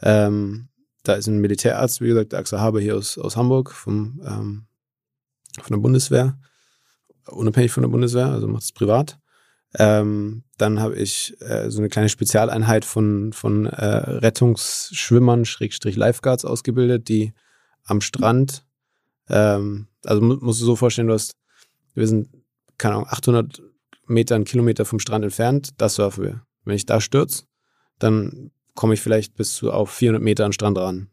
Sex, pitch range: male, 105-125 Hz